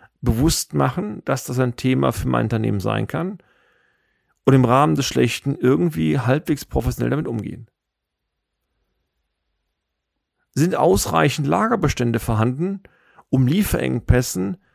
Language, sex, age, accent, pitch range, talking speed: German, male, 40-59, German, 100-140 Hz, 110 wpm